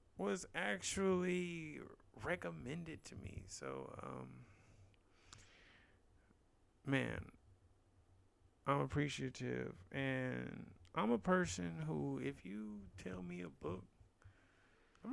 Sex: male